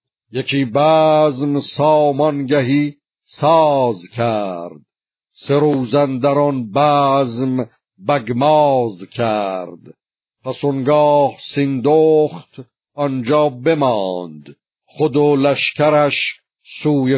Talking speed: 65 wpm